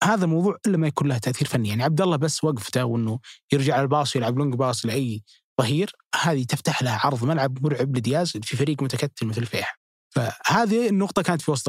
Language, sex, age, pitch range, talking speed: Arabic, male, 20-39, 130-160 Hz, 195 wpm